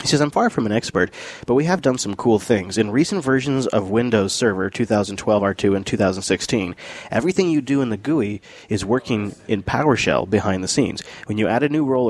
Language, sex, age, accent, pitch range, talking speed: English, male, 30-49, American, 100-130 Hz, 215 wpm